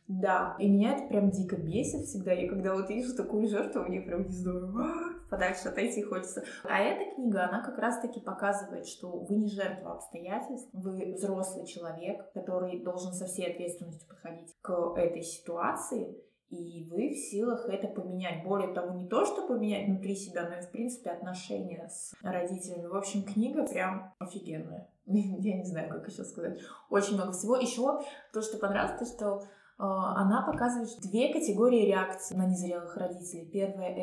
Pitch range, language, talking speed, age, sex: 180-215 Hz, Russian, 170 wpm, 20-39, female